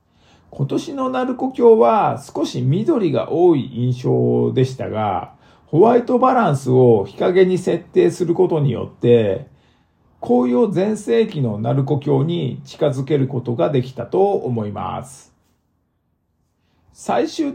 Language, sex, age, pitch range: Japanese, male, 50-69, 115-170 Hz